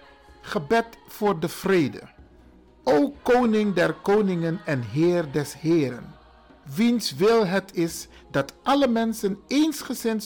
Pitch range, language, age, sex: 160-225 Hz, Dutch, 50-69, male